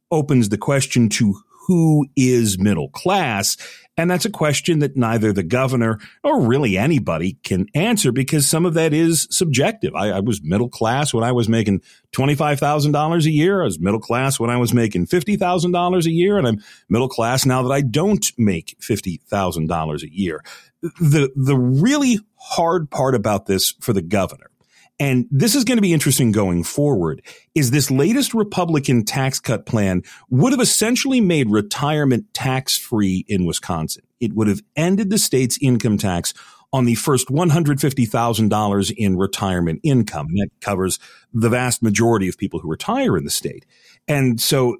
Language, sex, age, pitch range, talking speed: English, male, 40-59, 110-155 Hz, 175 wpm